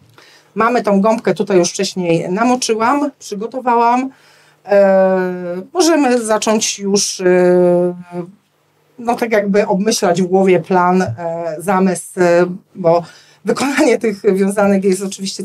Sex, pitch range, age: female, 190-225 Hz, 40-59